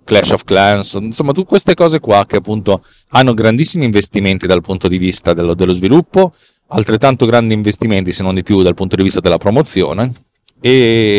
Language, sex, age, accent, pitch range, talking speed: Italian, male, 30-49, native, 95-115 Hz, 180 wpm